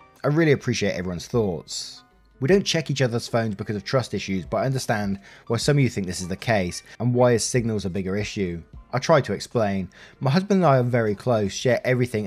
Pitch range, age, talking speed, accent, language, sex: 95-130 Hz, 20-39, 230 wpm, British, English, male